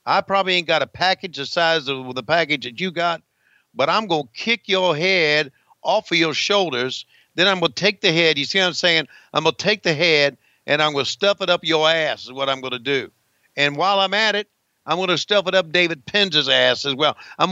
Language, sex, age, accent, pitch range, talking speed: English, male, 60-79, American, 160-215 Hz, 255 wpm